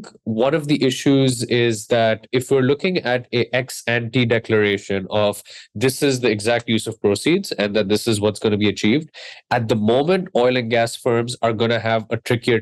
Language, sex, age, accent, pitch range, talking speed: English, male, 20-39, Indian, 110-130 Hz, 215 wpm